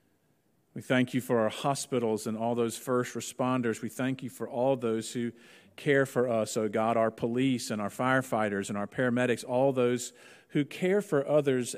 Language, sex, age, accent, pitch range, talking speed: English, male, 50-69, American, 115-130 Hz, 190 wpm